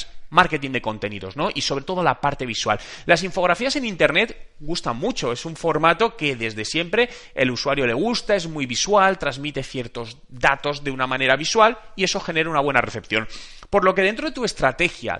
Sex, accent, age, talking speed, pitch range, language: male, Spanish, 30-49, 195 wpm, 130-200 Hz, Spanish